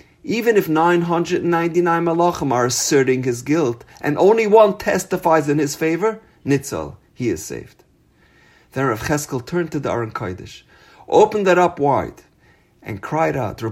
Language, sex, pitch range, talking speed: English, male, 110-170 Hz, 145 wpm